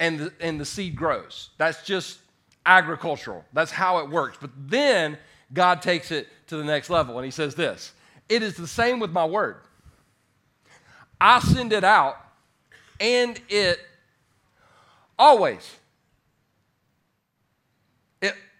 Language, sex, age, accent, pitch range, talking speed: English, male, 40-59, American, 125-175 Hz, 130 wpm